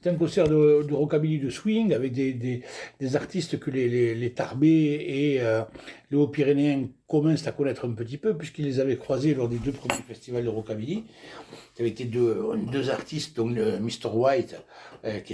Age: 60-79